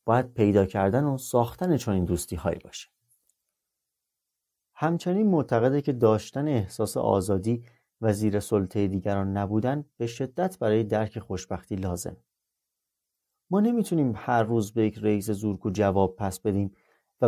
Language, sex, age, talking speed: Persian, male, 30-49, 130 wpm